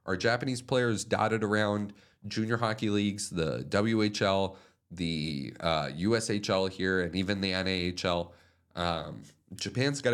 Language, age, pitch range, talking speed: English, 30-49, 90-110 Hz, 125 wpm